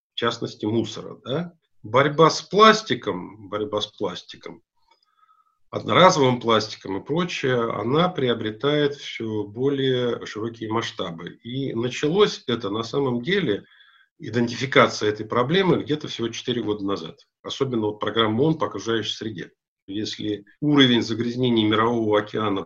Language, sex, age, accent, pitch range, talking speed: Russian, male, 50-69, native, 105-145 Hz, 110 wpm